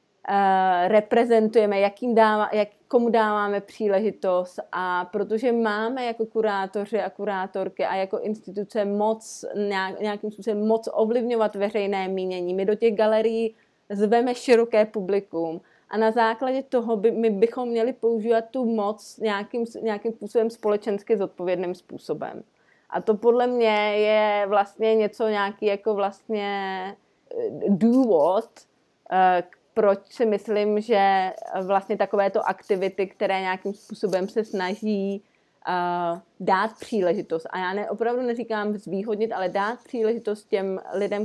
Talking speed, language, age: 125 wpm, Czech, 30-49